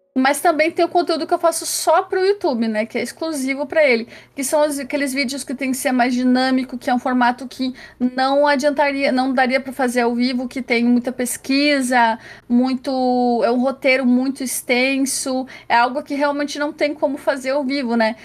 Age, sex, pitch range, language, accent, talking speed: 30-49, female, 245-290 Hz, Portuguese, Brazilian, 205 wpm